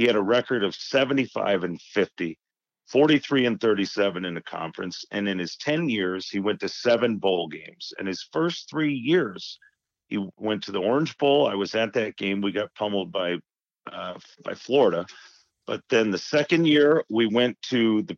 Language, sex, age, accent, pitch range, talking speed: English, male, 40-59, American, 100-125 Hz, 190 wpm